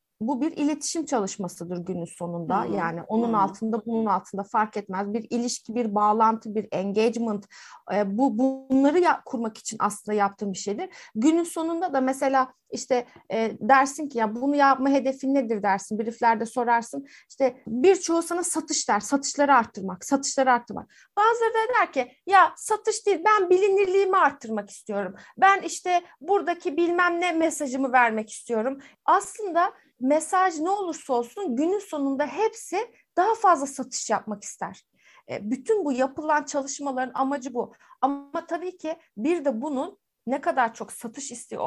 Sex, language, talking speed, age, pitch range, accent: female, Turkish, 150 wpm, 30-49, 225-335 Hz, native